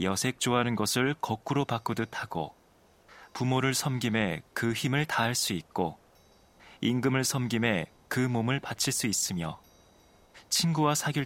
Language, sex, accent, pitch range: Korean, male, native, 100-125 Hz